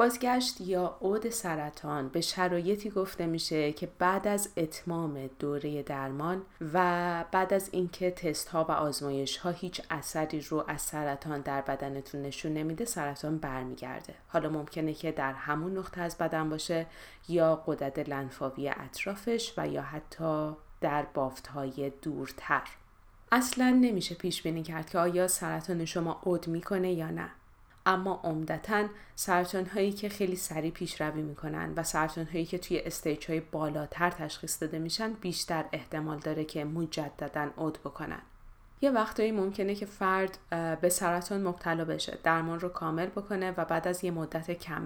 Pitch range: 155-185 Hz